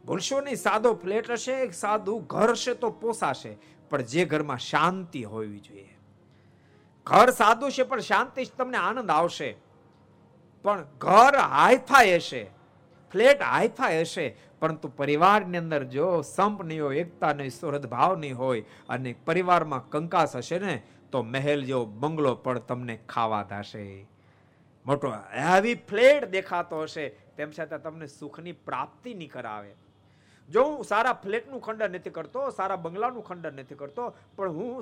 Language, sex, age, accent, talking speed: Gujarati, male, 50-69, native, 80 wpm